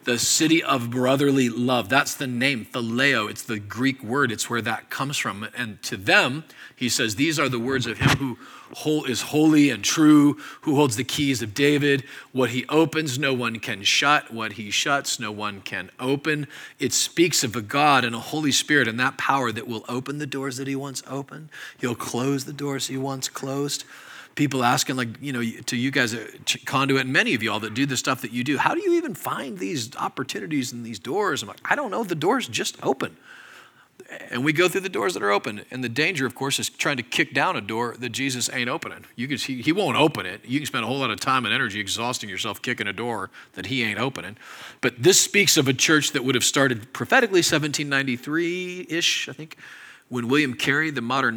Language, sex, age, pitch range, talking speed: English, male, 40-59, 120-145 Hz, 225 wpm